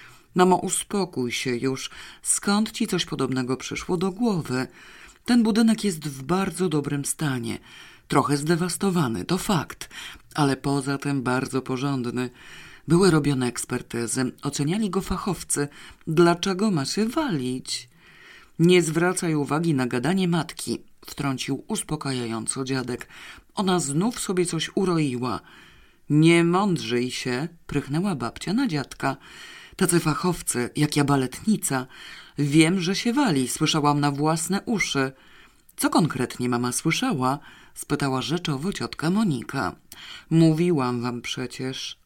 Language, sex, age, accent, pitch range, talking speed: Polish, female, 40-59, native, 130-180 Hz, 120 wpm